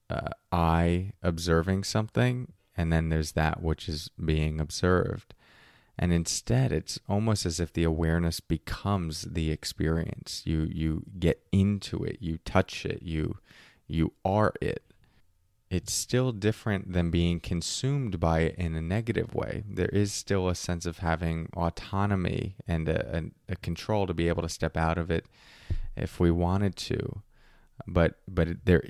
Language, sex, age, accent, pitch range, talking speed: English, male, 20-39, American, 80-100 Hz, 155 wpm